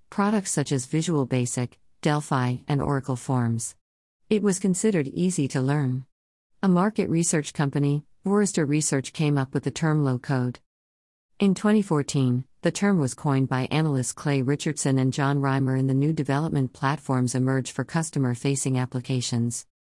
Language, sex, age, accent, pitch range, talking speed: English, female, 50-69, American, 130-155 Hz, 150 wpm